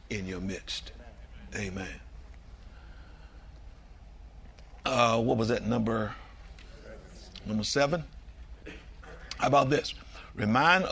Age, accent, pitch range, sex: 60-79, American, 75-115 Hz, male